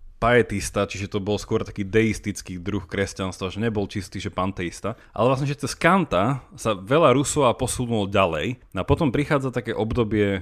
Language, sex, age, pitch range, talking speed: Slovak, male, 30-49, 100-130 Hz, 165 wpm